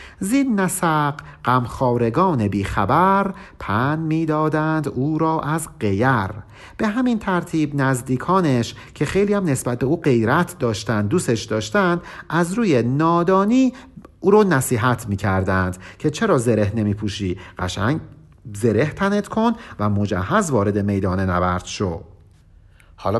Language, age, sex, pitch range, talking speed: Persian, 50-69, male, 105-165 Hz, 125 wpm